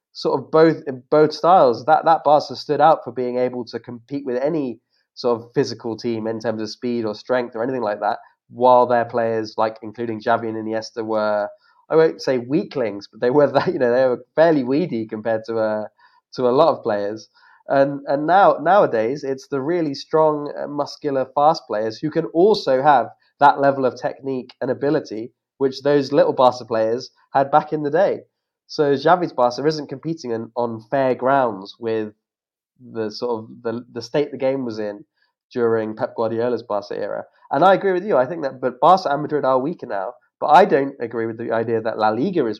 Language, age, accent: English, 20-39, British